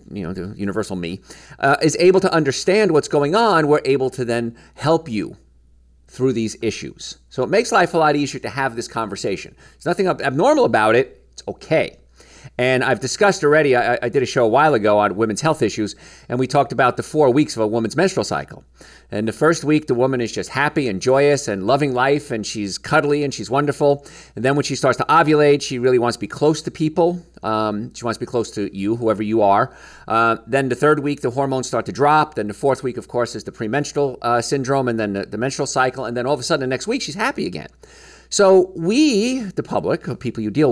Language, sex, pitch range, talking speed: English, male, 110-150 Hz, 235 wpm